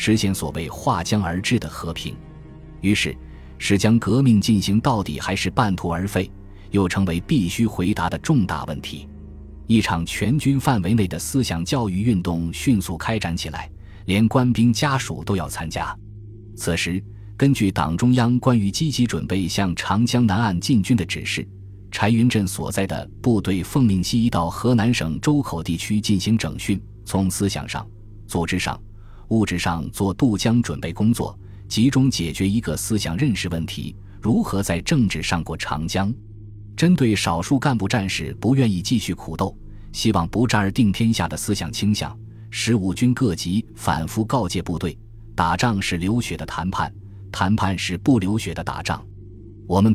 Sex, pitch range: male, 90-115 Hz